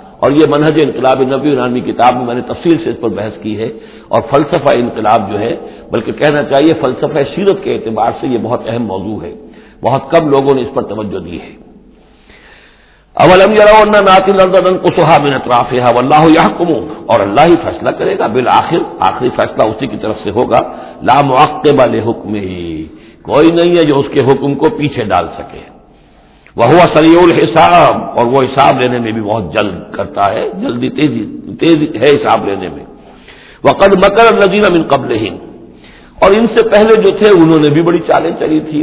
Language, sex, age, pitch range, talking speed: Urdu, male, 60-79, 120-165 Hz, 175 wpm